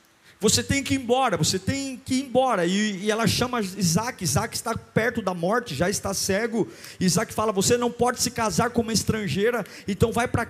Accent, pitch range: Brazilian, 180-260 Hz